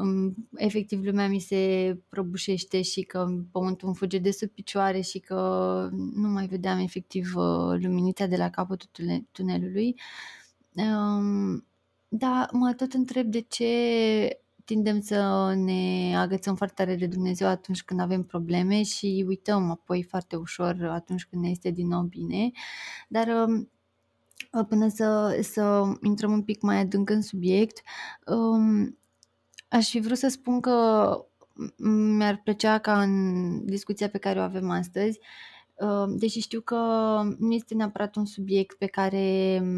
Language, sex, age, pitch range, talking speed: Romanian, female, 20-39, 190-225 Hz, 140 wpm